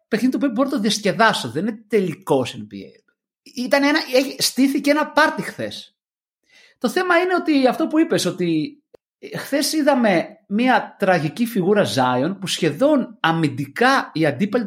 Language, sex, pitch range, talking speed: Greek, male, 180-285 Hz, 140 wpm